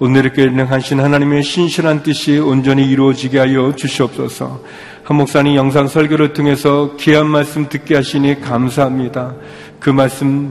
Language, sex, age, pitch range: Korean, male, 40-59, 120-145 Hz